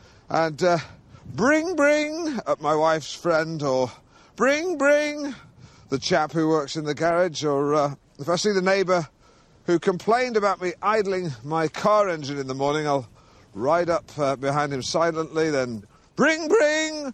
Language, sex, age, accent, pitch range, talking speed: English, male, 50-69, British, 125-175 Hz, 150 wpm